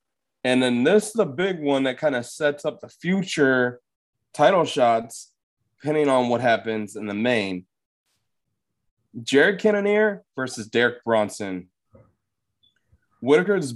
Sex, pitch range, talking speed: male, 110-150 Hz, 125 wpm